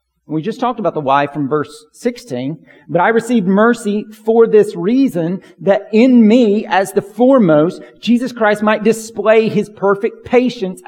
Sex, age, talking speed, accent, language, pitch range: male, 40-59, 160 wpm, American, English, 165-215 Hz